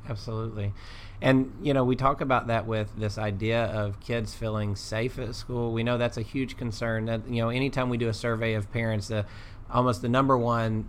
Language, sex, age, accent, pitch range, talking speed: English, male, 30-49, American, 105-120 Hz, 210 wpm